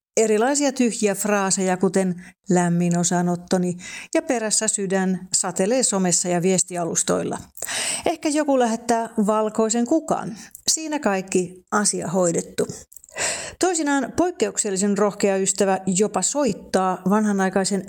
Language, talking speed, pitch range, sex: Finnish, 95 wpm, 190-240 Hz, female